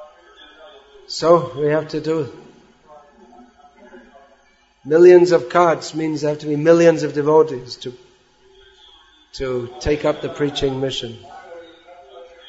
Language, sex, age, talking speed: English, male, 40-59, 110 wpm